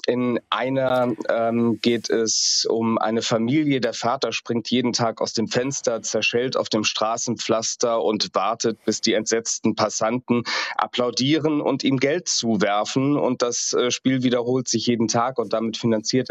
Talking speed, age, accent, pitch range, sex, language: 155 wpm, 30-49, German, 110-125 Hz, male, German